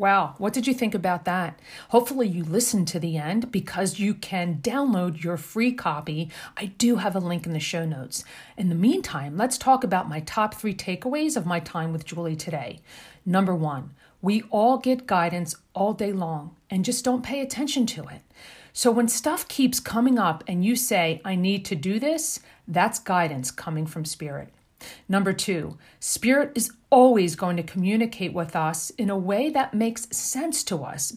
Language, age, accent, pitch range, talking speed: English, 40-59, American, 170-230 Hz, 190 wpm